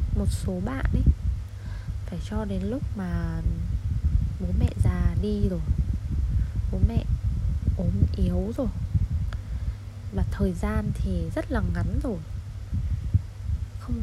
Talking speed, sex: 120 wpm, female